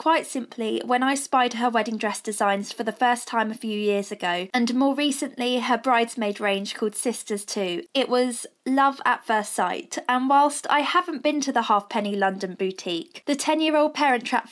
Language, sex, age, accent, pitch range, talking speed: English, female, 20-39, British, 210-255 Hz, 190 wpm